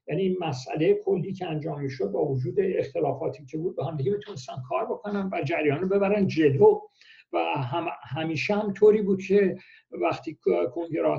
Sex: male